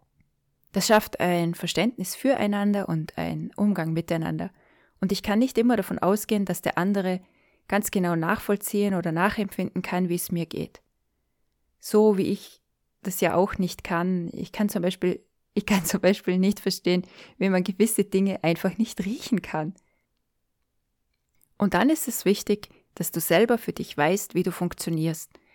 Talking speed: 155 wpm